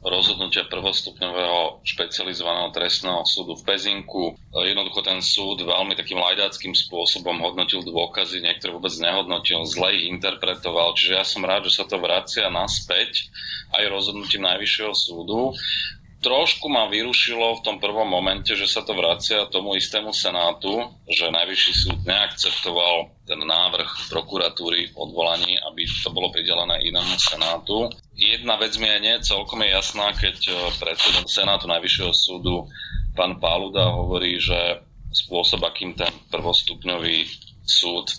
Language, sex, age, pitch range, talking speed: Slovak, male, 30-49, 90-100 Hz, 135 wpm